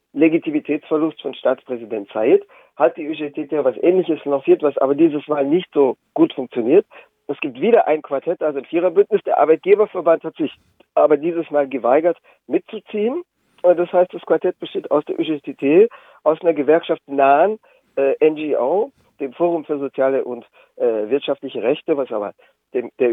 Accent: German